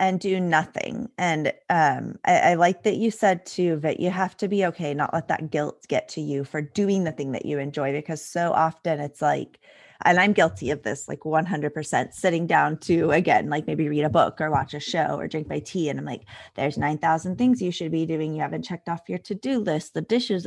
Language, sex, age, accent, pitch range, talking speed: English, female, 20-39, American, 155-190 Hz, 235 wpm